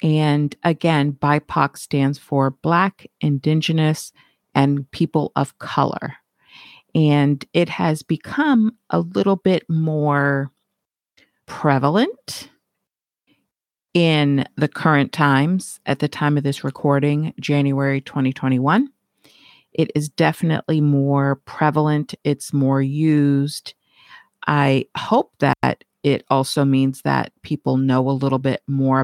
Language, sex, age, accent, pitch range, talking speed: English, female, 40-59, American, 140-170 Hz, 110 wpm